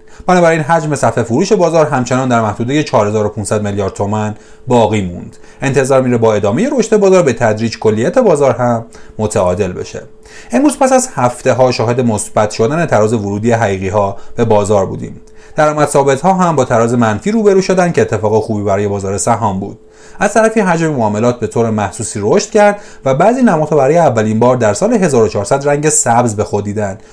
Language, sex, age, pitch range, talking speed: Persian, male, 30-49, 105-165 Hz, 175 wpm